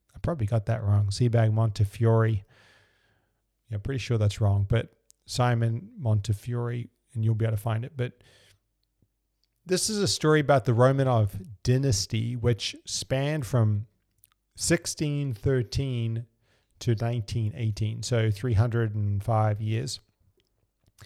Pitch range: 105-120 Hz